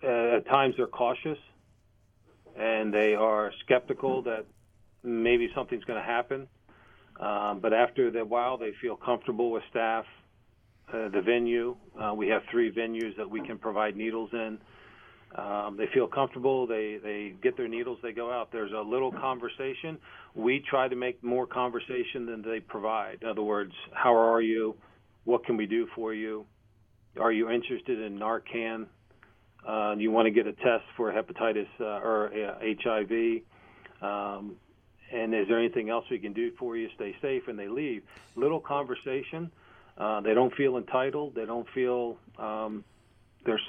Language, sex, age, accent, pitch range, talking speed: English, male, 40-59, American, 105-125 Hz, 170 wpm